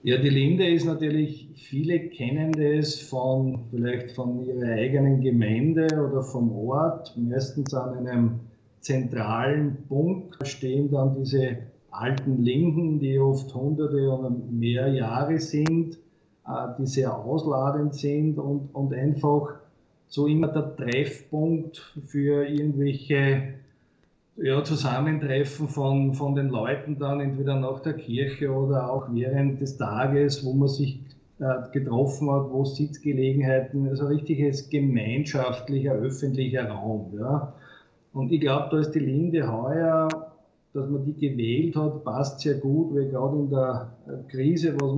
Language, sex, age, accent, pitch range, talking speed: German, male, 50-69, Austrian, 130-150 Hz, 130 wpm